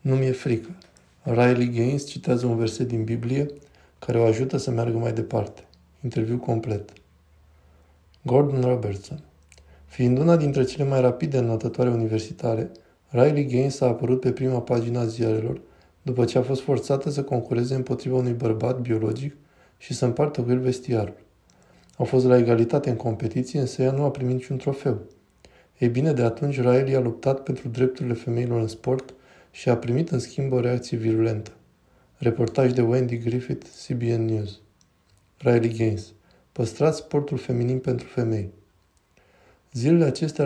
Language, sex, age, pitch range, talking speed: Romanian, male, 20-39, 110-130 Hz, 150 wpm